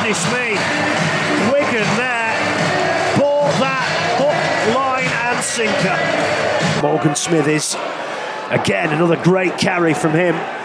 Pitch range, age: 170-255 Hz, 30-49